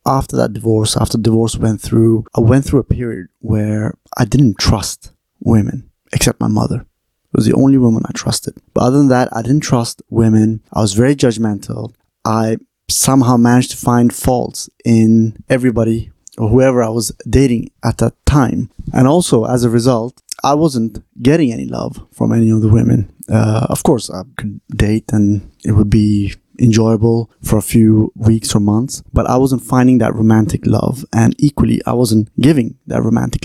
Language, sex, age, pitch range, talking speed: English, male, 20-39, 110-125 Hz, 185 wpm